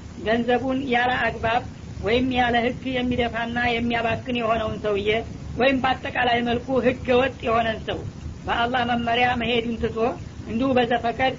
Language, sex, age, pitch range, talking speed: Amharic, female, 40-59, 230-245 Hz, 105 wpm